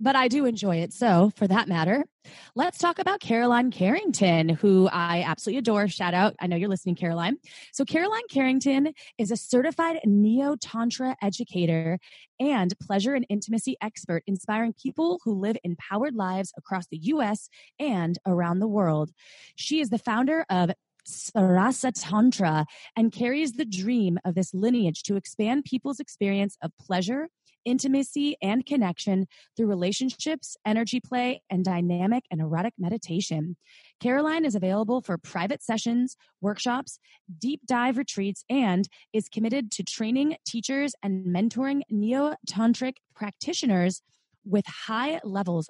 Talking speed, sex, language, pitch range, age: 140 wpm, female, English, 185-255 Hz, 20-39